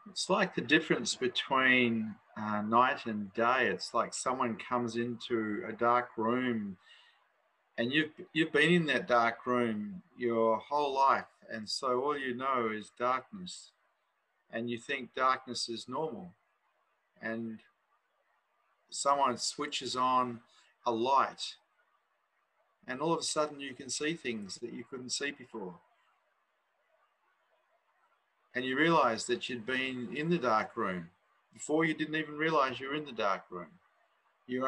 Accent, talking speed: Australian, 140 wpm